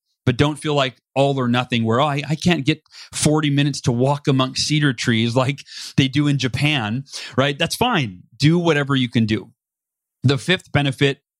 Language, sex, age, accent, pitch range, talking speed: English, male, 30-49, American, 135-190 Hz, 185 wpm